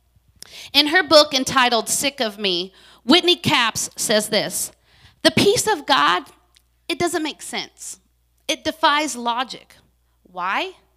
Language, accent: English, American